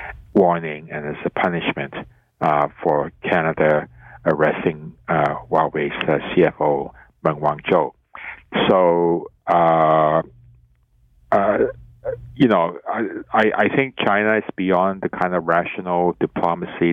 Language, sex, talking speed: English, male, 110 wpm